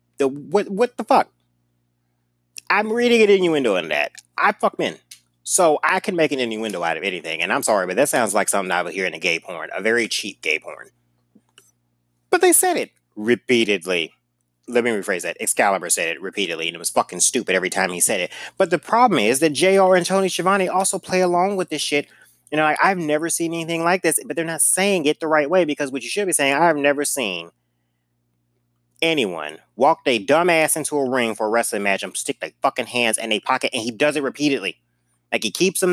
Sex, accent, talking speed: male, American, 225 wpm